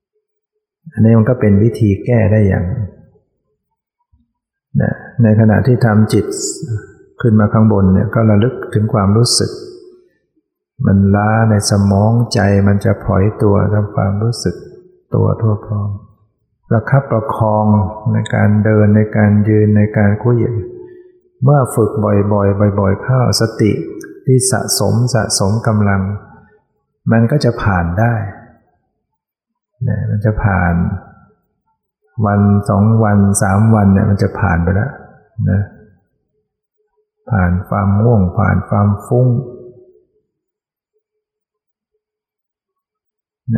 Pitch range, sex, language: 100-125 Hz, male, Thai